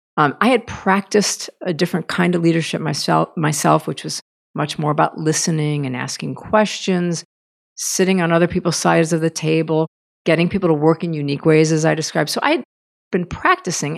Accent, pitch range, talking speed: American, 140-185 Hz, 185 wpm